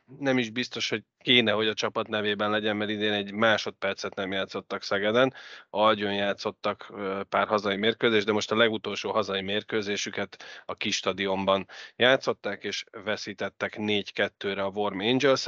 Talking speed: 145 wpm